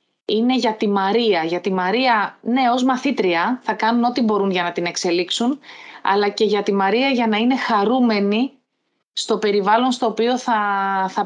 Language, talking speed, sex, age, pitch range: Greek, 175 wpm, female, 20-39, 185-225 Hz